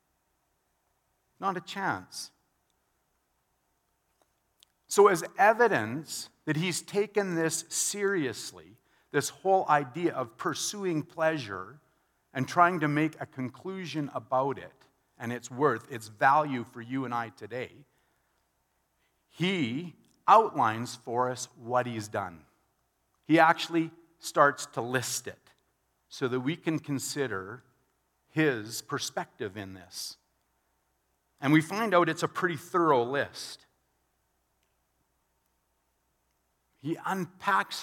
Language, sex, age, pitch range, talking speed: English, male, 50-69, 120-175 Hz, 110 wpm